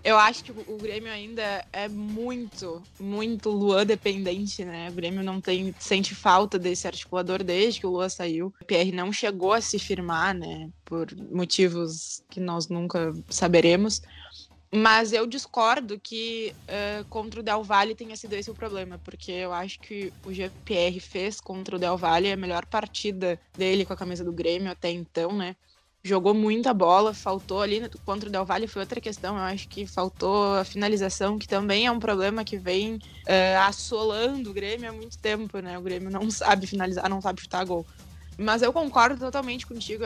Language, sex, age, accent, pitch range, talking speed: Portuguese, female, 20-39, Brazilian, 185-220 Hz, 180 wpm